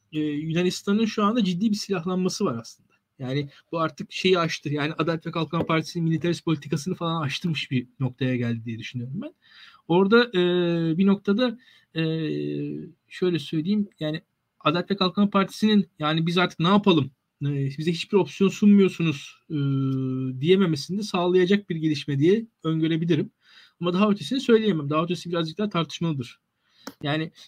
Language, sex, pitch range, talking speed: Turkish, male, 160-205 Hz, 145 wpm